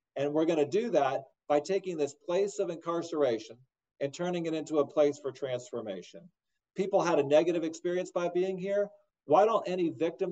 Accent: American